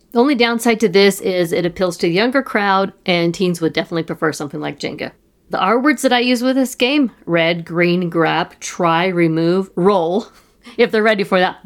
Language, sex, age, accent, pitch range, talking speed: English, female, 50-69, American, 165-205 Hz, 200 wpm